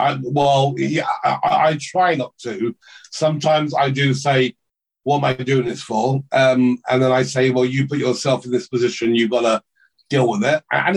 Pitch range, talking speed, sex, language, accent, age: 125-145 Hz, 195 wpm, male, English, British, 40-59